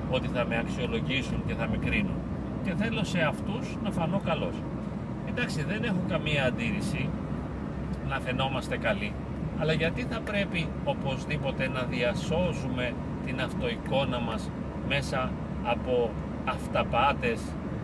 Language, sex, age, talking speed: Greek, male, 40-59, 120 wpm